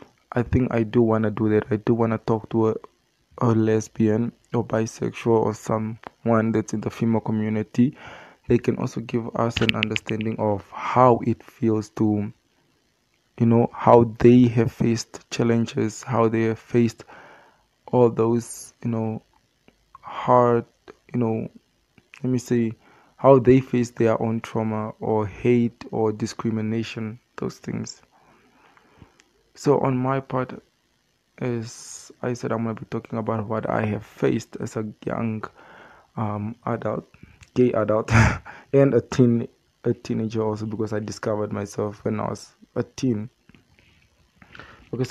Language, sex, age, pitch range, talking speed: English, male, 20-39, 110-120 Hz, 145 wpm